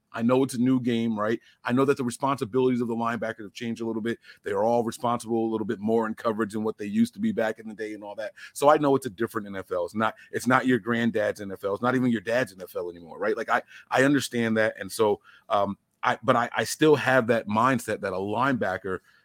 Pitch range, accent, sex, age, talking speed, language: 110-130 Hz, American, male, 30-49, 260 wpm, English